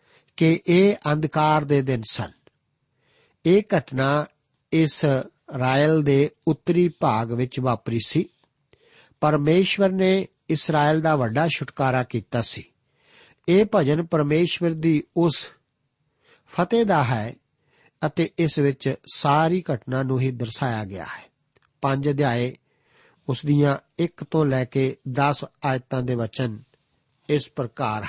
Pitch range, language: 130-160 Hz, Punjabi